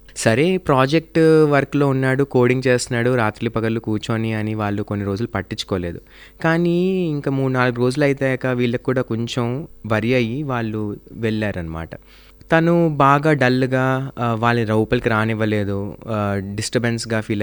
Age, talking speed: 20-39, 115 wpm